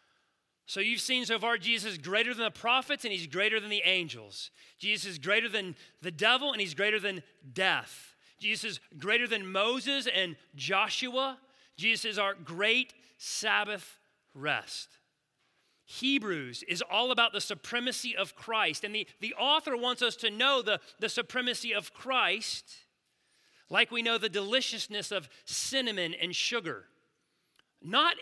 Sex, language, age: male, English, 40-59